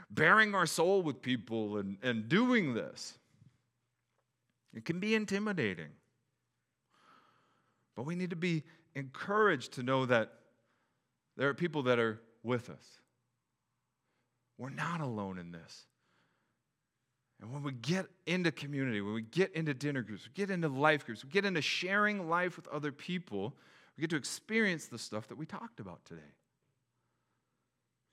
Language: English